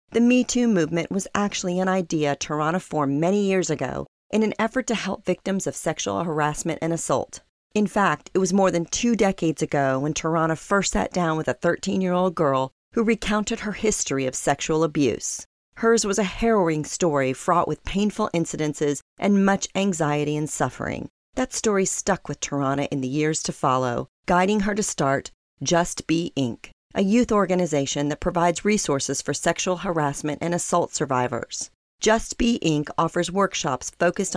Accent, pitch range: American, 150-195 Hz